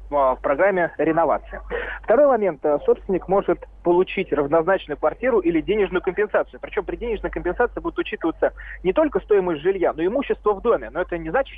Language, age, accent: Russian, 20-39, native